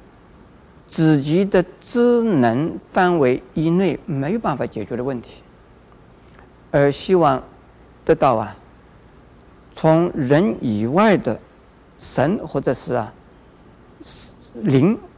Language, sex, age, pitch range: Chinese, male, 50-69, 120-165 Hz